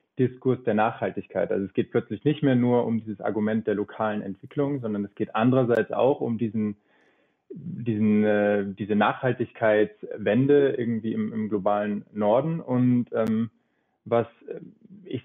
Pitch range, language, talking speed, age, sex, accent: 105-125 Hz, German, 140 wpm, 20-39, male, German